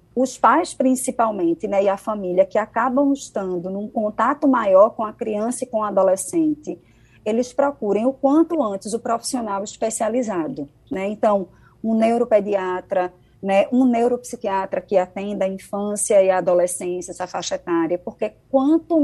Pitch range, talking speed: 195-245 Hz, 150 wpm